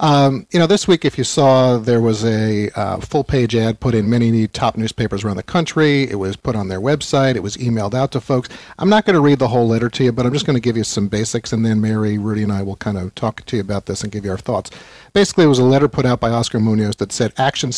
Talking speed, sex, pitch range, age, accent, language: 285 wpm, male, 115-140 Hz, 50-69, American, English